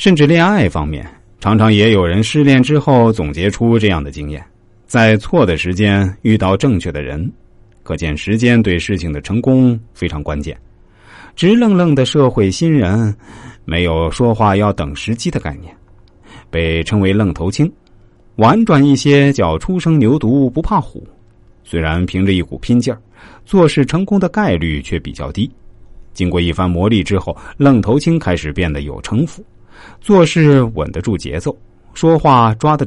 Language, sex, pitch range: Chinese, male, 90-135 Hz